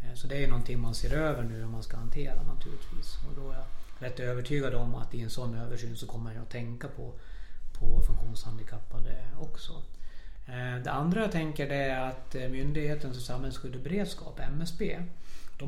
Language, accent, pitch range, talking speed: Swedish, native, 120-145 Hz, 180 wpm